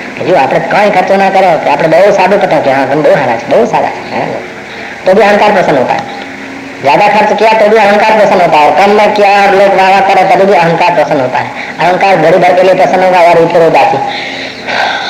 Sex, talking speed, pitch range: male, 140 wpm, 155-205 Hz